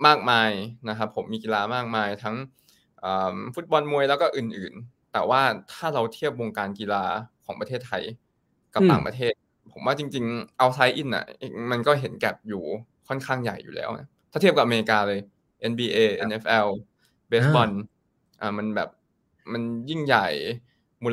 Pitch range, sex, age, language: 110-135 Hz, male, 20-39, Thai